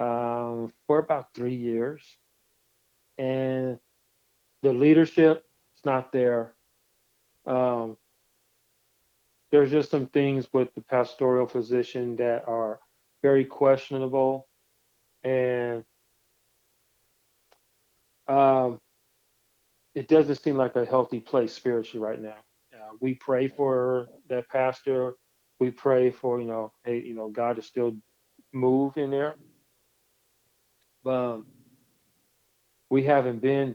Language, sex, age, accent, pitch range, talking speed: English, male, 40-59, American, 115-130 Hz, 110 wpm